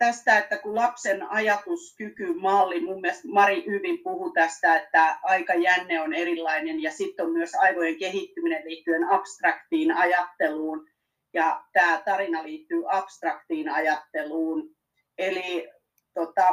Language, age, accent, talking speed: Finnish, 40-59, native, 110 wpm